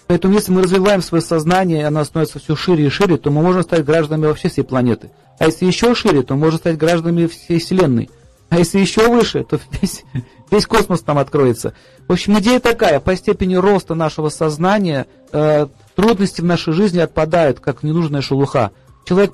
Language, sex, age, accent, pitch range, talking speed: Russian, male, 40-59, native, 150-195 Hz, 190 wpm